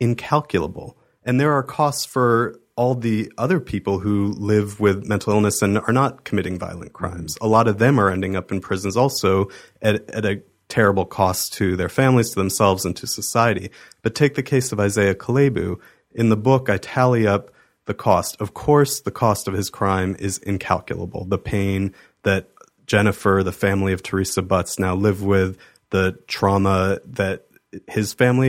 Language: English